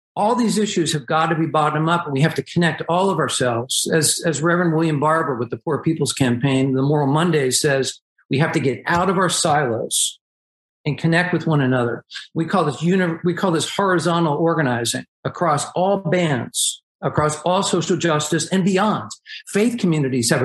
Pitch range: 145-180 Hz